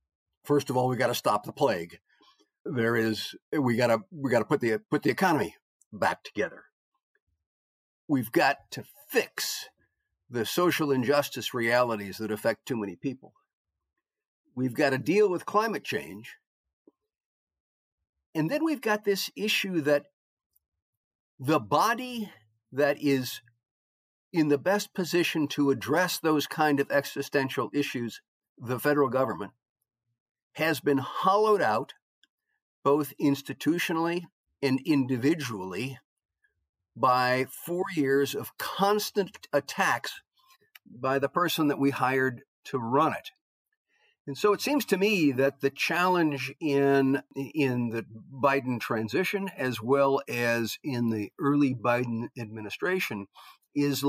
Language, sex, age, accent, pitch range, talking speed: English, male, 50-69, American, 120-175 Hz, 125 wpm